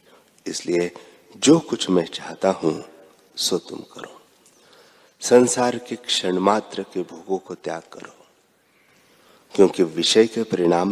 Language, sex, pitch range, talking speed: Hindi, male, 95-120 Hz, 120 wpm